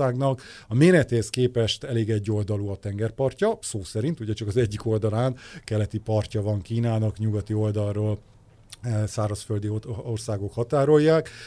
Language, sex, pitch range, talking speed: Hungarian, male, 105-120 Hz, 125 wpm